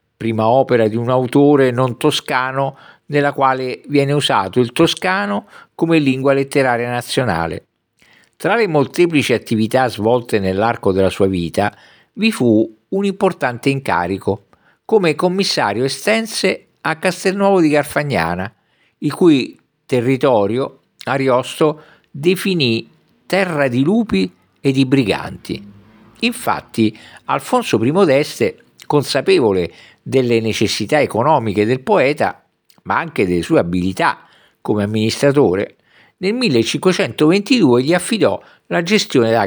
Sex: male